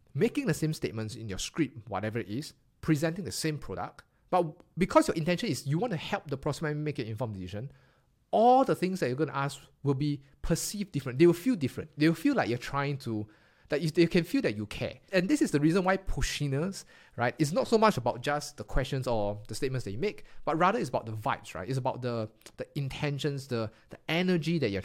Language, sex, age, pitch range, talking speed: English, male, 30-49, 120-170 Hz, 240 wpm